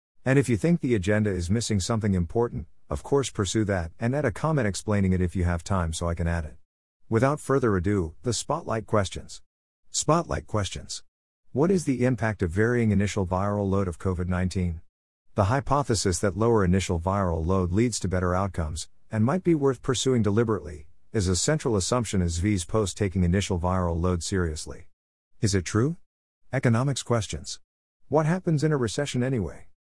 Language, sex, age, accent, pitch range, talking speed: English, male, 50-69, American, 90-120 Hz, 175 wpm